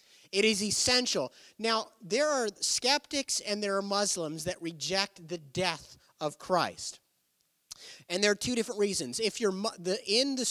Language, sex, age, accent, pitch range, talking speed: English, male, 30-49, American, 175-225 Hz, 165 wpm